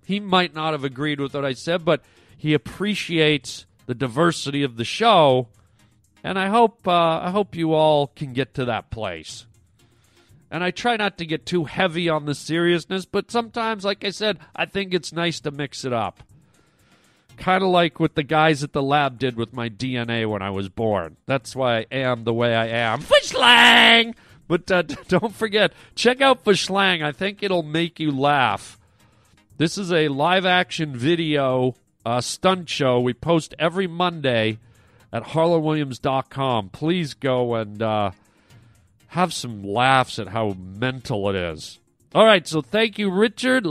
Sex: male